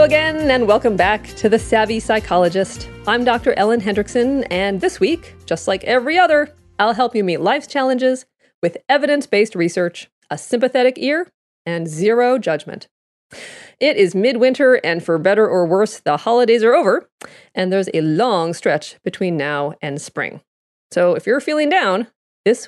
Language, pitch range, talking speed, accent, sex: English, 180-260 Hz, 160 wpm, American, female